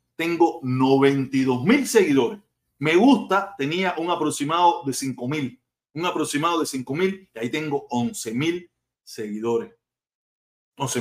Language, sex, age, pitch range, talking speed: Spanish, male, 40-59, 130-180 Hz, 130 wpm